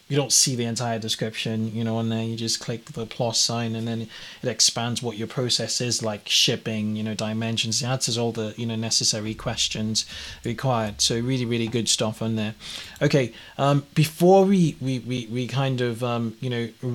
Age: 20-39